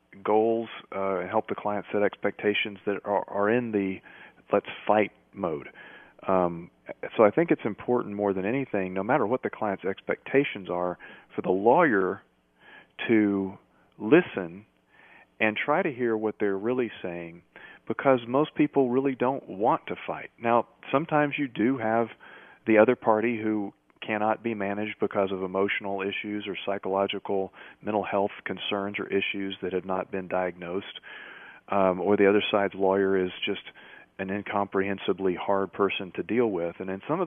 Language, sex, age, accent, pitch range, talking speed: English, male, 40-59, American, 95-110 Hz, 160 wpm